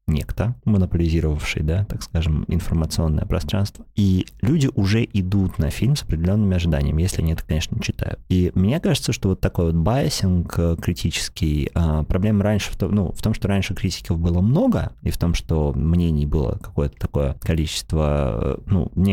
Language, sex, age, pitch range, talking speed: Russian, male, 30-49, 80-100 Hz, 165 wpm